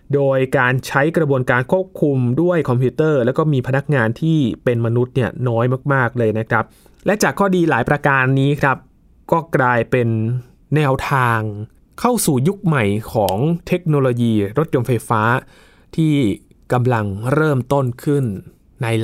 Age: 20-39